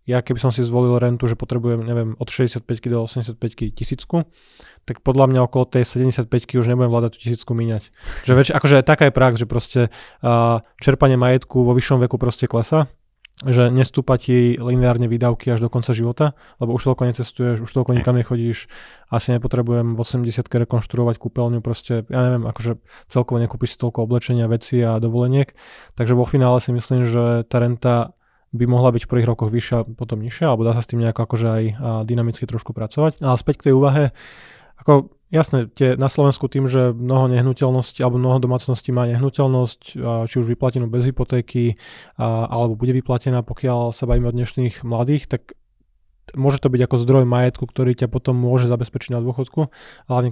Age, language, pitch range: 20-39, Slovak, 120-130 Hz